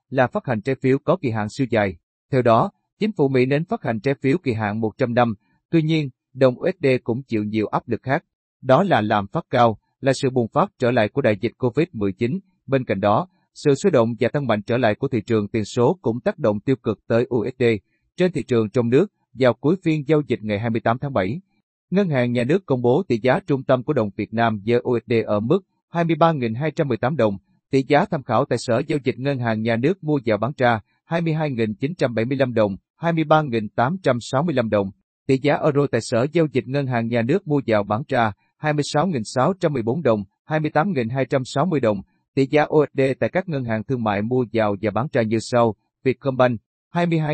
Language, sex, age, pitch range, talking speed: Vietnamese, male, 30-49, 115-150 Hz, 205 wpm